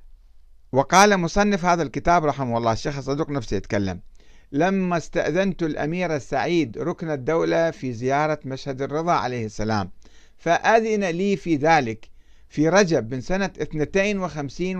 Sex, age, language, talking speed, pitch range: male, 60-79, Arabic, 130 wpm, 130-185 Hz